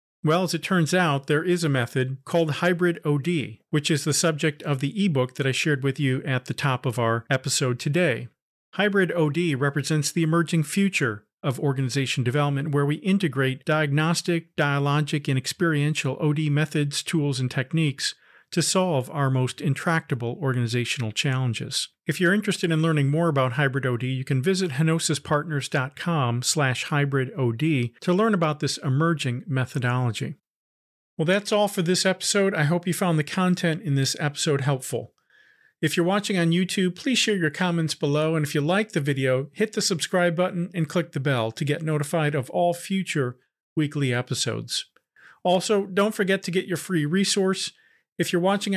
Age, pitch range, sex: 40-59, 140-175 Hz, male